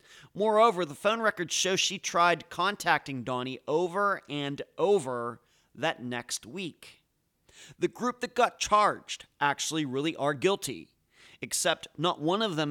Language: English